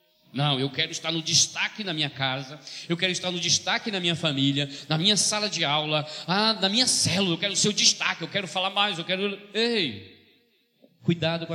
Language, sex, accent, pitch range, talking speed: Portuguese, male, Brazilian, 155-210 Hz, 210 wpm